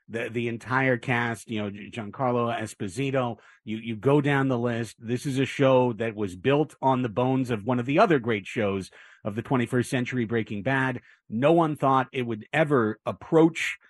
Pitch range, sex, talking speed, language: 115-135 Hz, male, 190 wpm, English